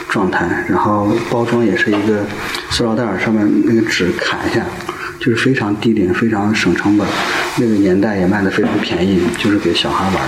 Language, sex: Chinese, male